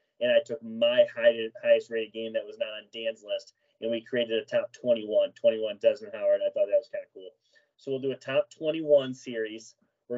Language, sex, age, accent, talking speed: English, male, 30-49, American, 210 wpm